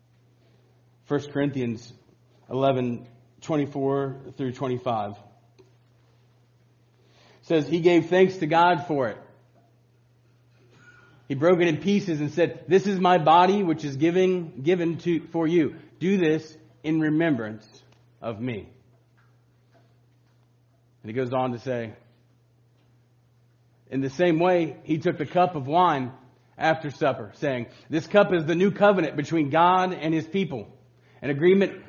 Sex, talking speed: male, 130 wpm